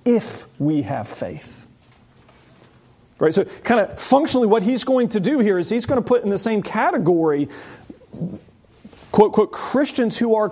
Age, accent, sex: 40-59, American, male